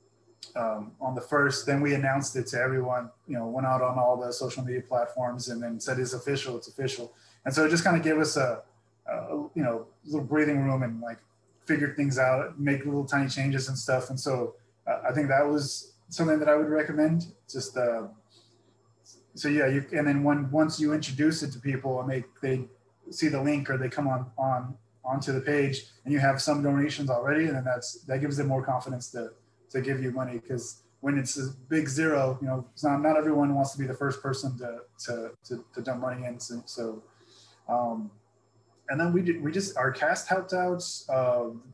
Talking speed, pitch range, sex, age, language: 215 wpm, 125-145 Hz, male, 20-39, English